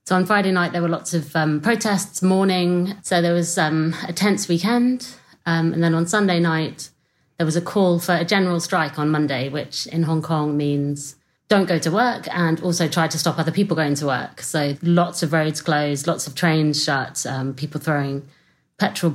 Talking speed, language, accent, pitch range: 205 wpm, English, British, 155-180 Hz